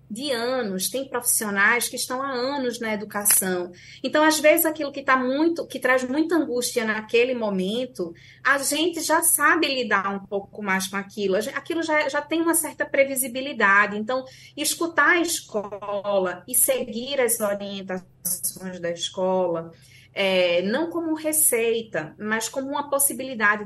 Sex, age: female, 20-39